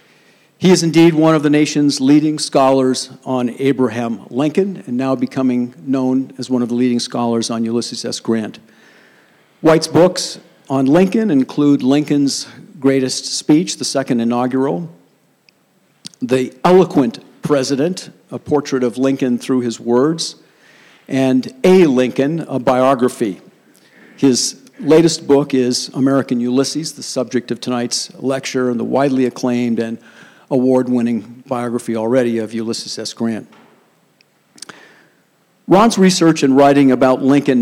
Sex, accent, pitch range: male, American, 120-145 Hz